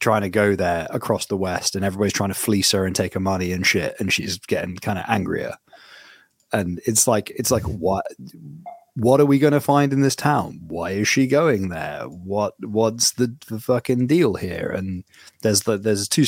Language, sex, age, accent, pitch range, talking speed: English, male, 20-39, British, 90-110 Hz, 210 wpm